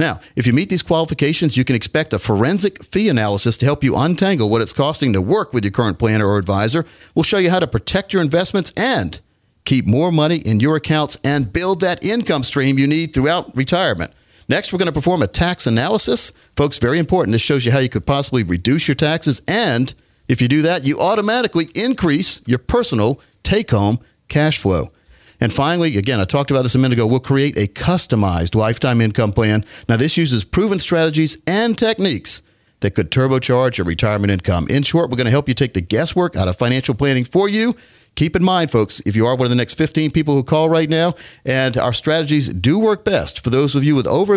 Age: 50-69